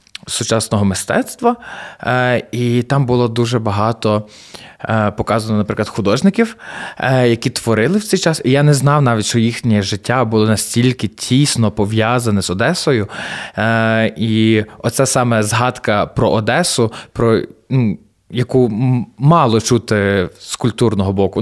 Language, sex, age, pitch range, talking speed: Ukrainian, male, 20-39, 100-125 Hz, 120 wpm